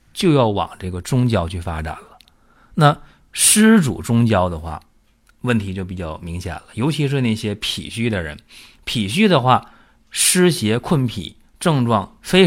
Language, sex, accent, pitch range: Chinese, male, native, 90-125 Hz